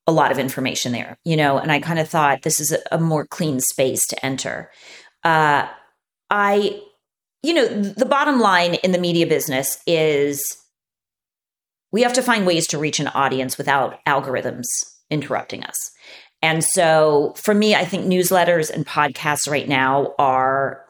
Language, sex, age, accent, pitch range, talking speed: English, female, 30-49, American, 145-200 Hz, 165 wpm